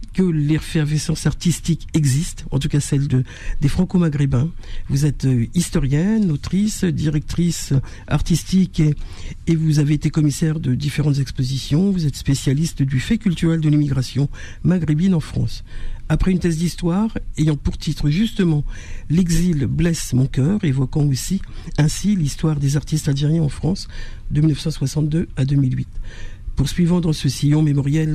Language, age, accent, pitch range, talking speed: French, 50-69, French, 135-165 Hz, 150 wpm